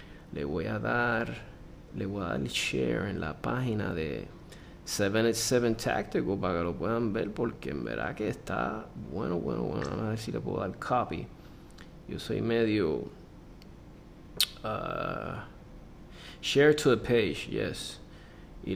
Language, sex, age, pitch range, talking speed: Spanish, male, 20-39, 105-130 Hz, 145 wpm